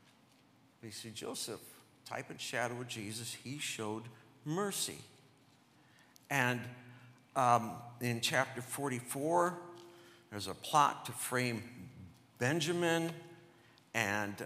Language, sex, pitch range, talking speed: English, male, 115-160 Hz, 95 wpm